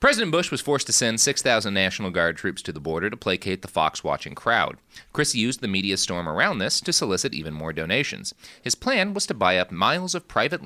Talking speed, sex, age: 220 wpm, male, 30-49